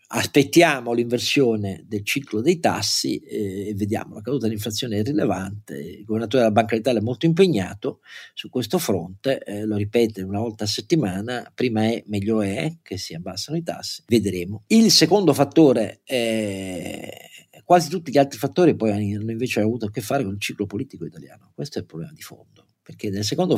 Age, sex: 40-59, male